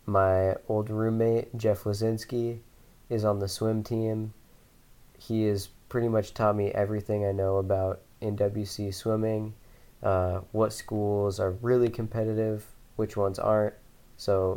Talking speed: 130 wpm